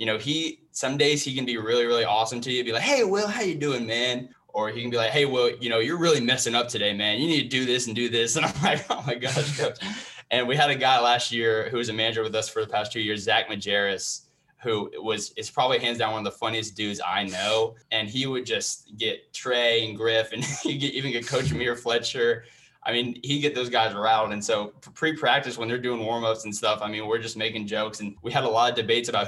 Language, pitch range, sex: English, 110-135 Hz, male